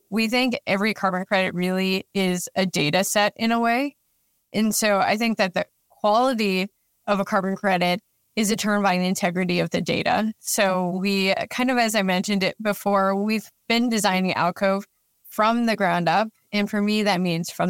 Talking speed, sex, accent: 185 wpm, female, American